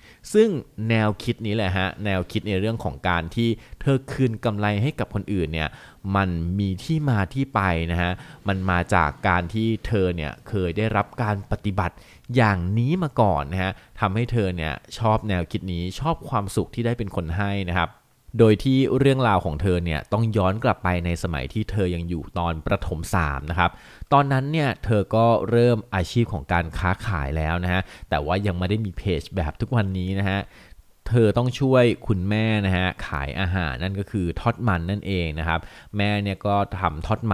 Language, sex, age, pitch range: Thai, male, 20-39, 90-110 Hz